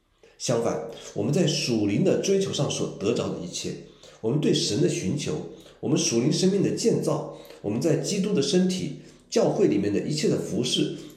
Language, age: Chinese, 50-69